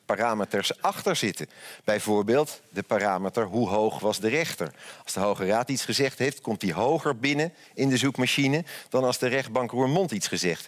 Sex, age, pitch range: male, 50-69, 115-160 Hz